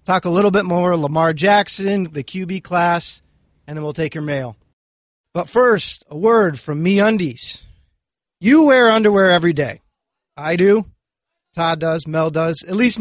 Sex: male